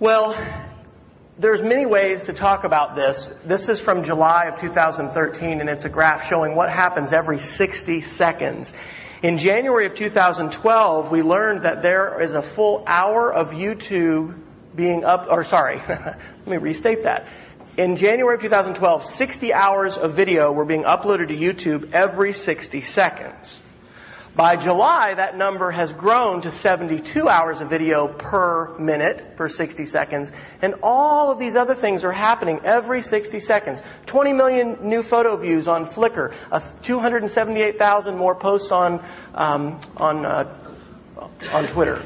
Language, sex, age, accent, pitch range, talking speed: English, male, 40-59, American, 160-220 Hz, 150 wpm